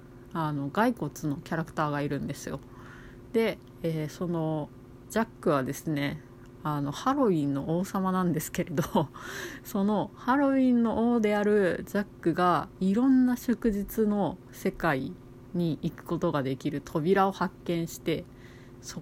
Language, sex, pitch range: Japanese, female, 140-190 Hz